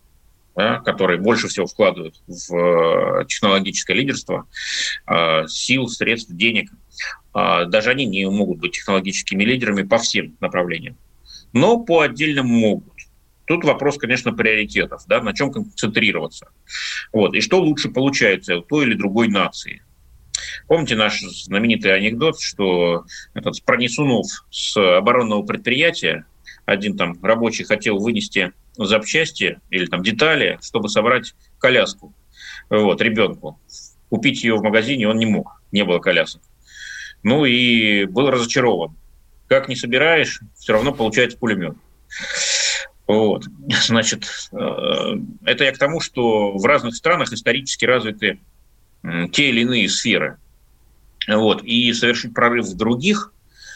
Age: 30-49